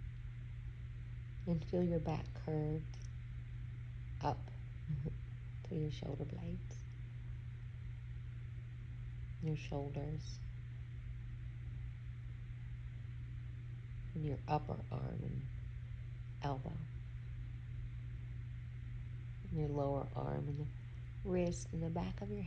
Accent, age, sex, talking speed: American, 40-59, female, 80 wpm